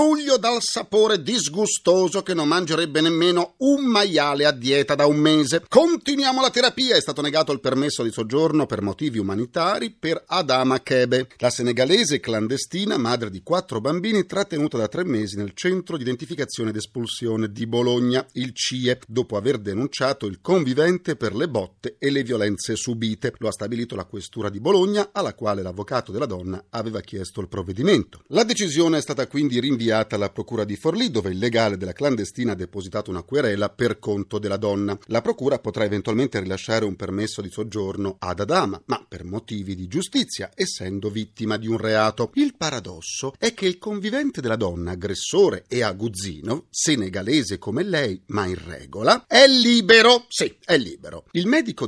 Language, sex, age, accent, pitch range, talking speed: Italian, male, 40-59, native, 105-175 Hz, 170 wpm